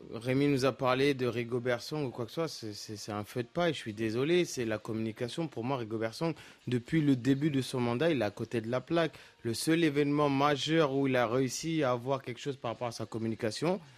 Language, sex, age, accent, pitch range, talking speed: French, male, 30-49, French, 125-155 Hz, 245 wpm